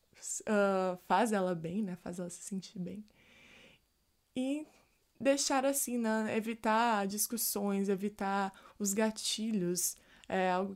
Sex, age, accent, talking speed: female, 20-39, Brazilian, 110 wpm